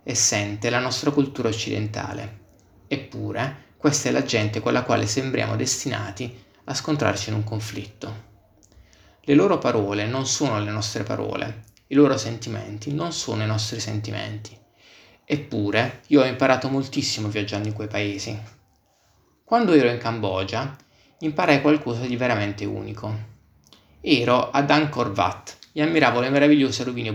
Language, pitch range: Italian, 105-135 Hz